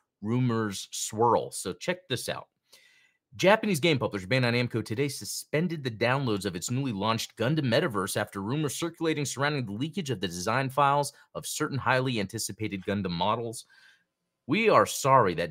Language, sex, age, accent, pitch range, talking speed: English, male, 30-49, American, 100-145 Hz, 160 wpm